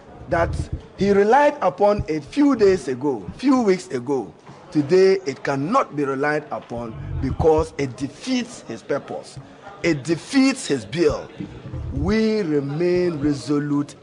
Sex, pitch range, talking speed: male, 140-185 Hz, 125 wpm